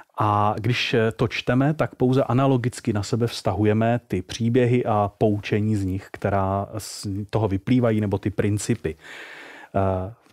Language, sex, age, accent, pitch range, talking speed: Czech, male, 30-49, native, 110-140 Hz, 140 wpm